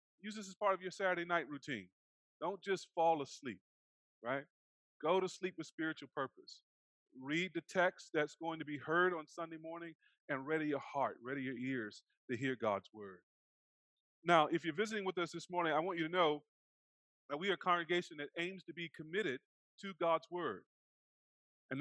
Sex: male